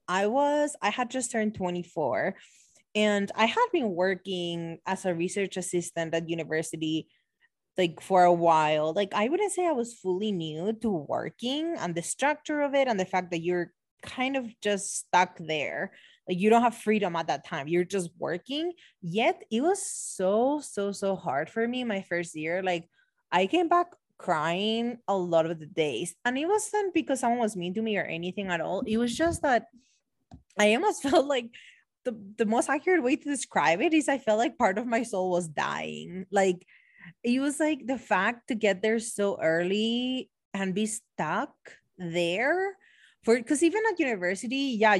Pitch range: 180-260 Hz